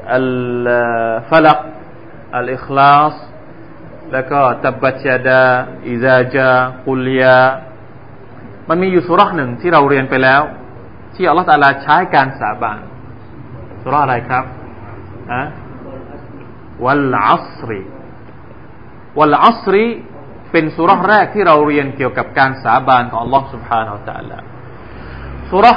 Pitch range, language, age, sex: 125-165 Hz, Thai, 30-49, male